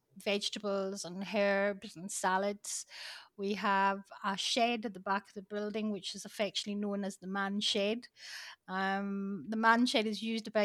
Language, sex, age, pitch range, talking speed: English, female, 30-49, 200-225 Hz, 170 wpm